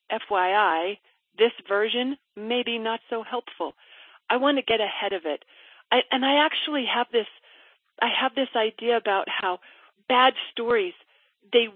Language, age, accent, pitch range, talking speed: English, 40-59, American, 225-320 Hz, 145 wpm